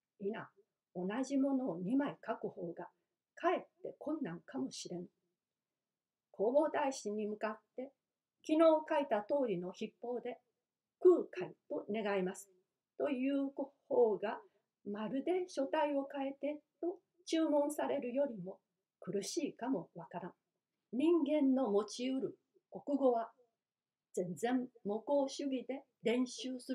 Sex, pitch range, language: female, 205-285 Hz, Japanese